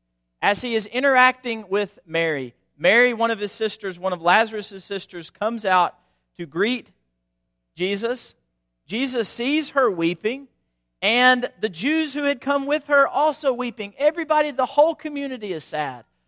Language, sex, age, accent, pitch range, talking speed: English, male, 40-59, American, 170-270 Hz, 150 wpm